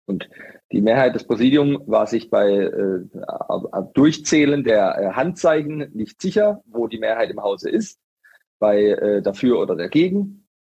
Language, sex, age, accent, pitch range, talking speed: German, male, 40-59, German, 115-150 Hz, 145 wpm